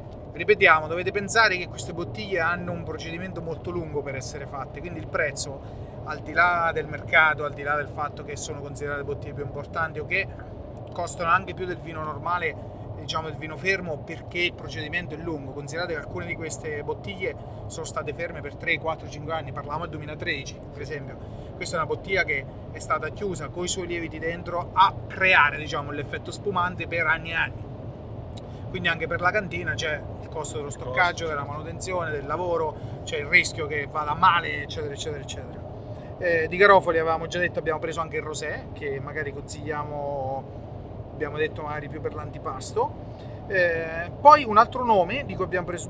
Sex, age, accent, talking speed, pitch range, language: male, 30-49, native, 190 wpm, 135-170 Hz, Italian